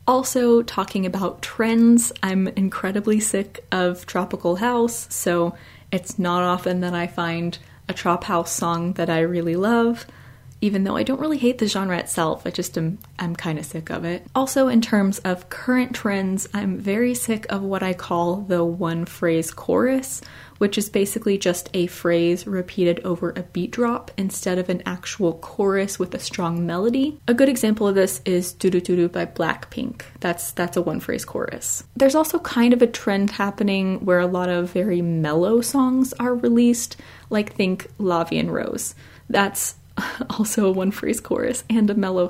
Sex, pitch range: female, 175-225 Hz